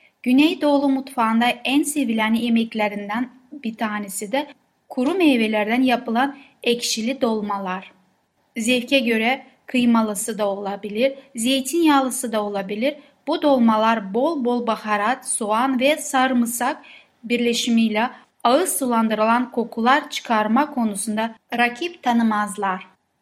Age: 10-29